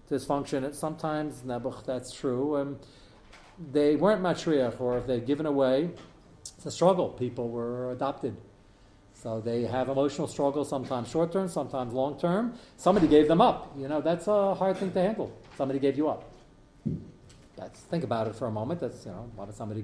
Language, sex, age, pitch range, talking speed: English, male, 40-59, 125-150 Hz, 180 wpm